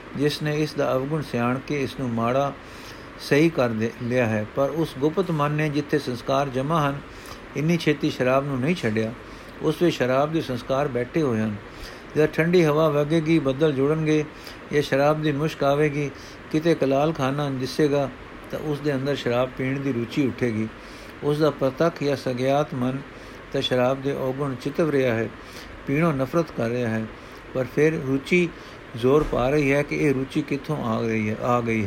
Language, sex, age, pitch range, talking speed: Punjabi, male, 60-79, 130-155 Hz, 180 wpm